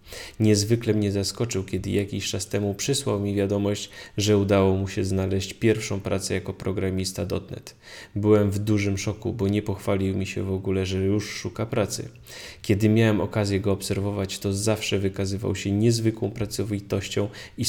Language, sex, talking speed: Polish, male, 160 wpm